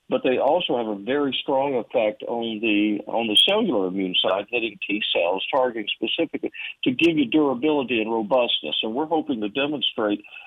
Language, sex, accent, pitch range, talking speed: English, male, American, 105-145 Hz, 180 wpm